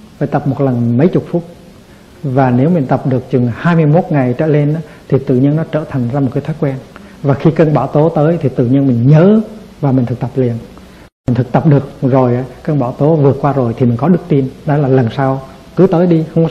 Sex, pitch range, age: male, 125-155 Hz, 60-79